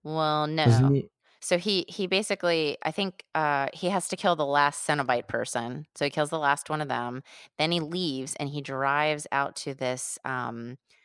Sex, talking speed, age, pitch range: female, 190 wpm, 20-39, 135-175 Hz